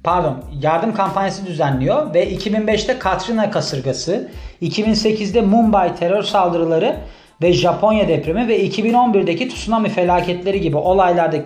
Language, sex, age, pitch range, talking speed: Turkish, male, 40-59, 170-220 Hz, 110 wpm